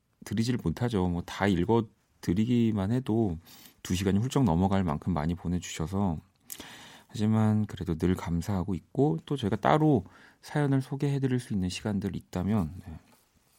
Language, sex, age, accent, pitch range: Korean, male, 40-59, native, 90-130 Hz